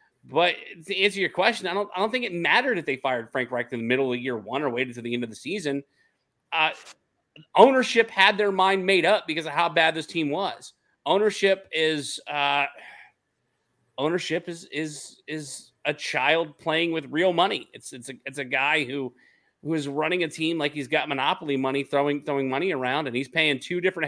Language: English